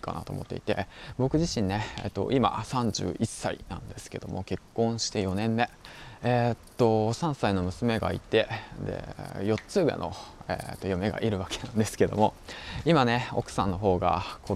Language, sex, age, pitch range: Japanese, male, 20-39, 95-115 Hz